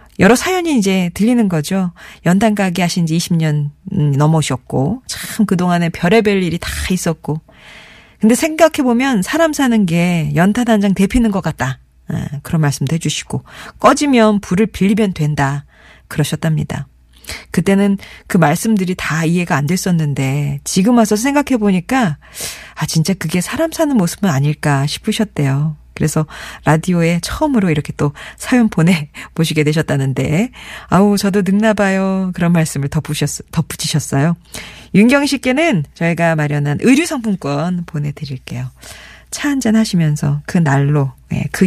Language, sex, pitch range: Korean, female, 155-215 Hz